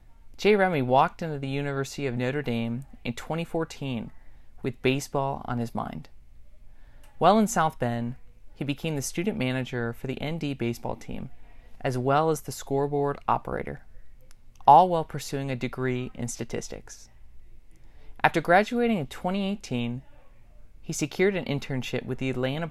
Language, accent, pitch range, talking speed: English, American, 120-150 Hz, 145 wpm